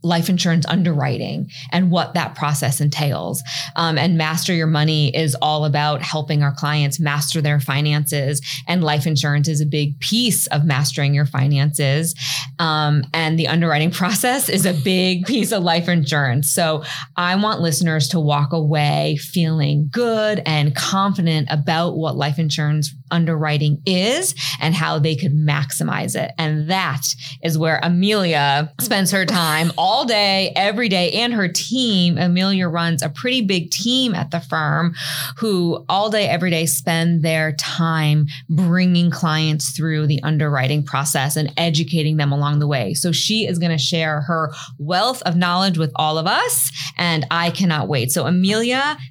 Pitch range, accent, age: 145-175 Hz, American, 20-39